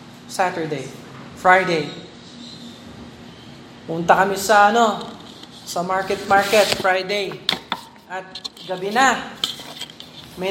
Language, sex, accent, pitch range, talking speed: Filipino, male, native, 175-235 Hz, 80 wpm